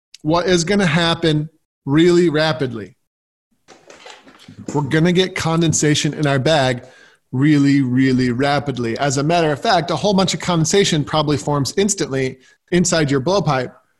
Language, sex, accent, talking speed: English, male, American, 145 wpm